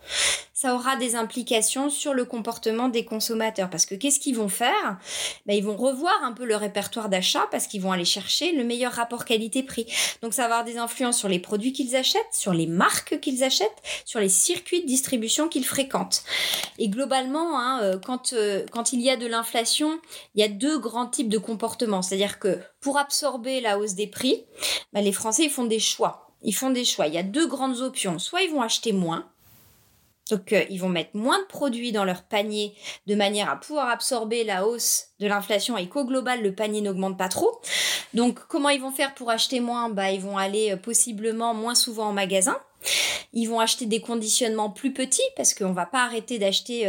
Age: 30-49